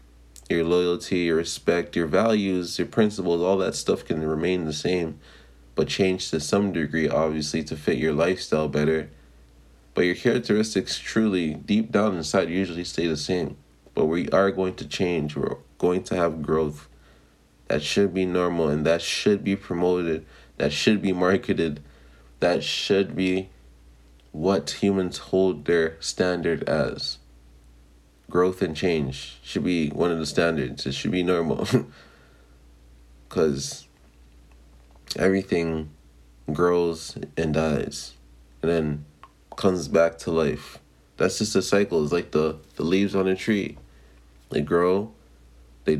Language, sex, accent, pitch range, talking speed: English, male, American, 70-95 Hz, 140 wpm